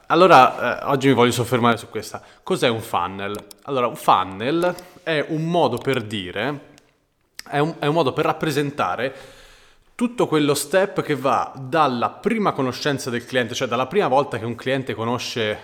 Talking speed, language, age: 165 wpm, Italian, 30-49